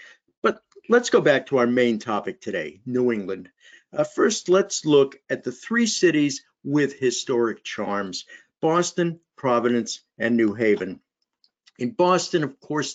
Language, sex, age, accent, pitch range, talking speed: English, male, 50-69, American, 130-160 Hz, 140 wpm